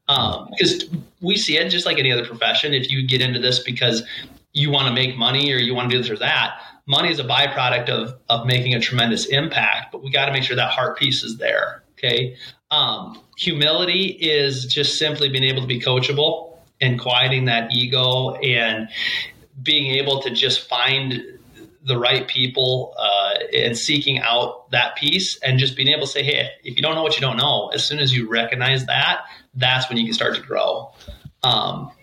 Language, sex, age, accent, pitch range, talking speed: English, male, 30-49, American, 125-145 Hz, 205 wpm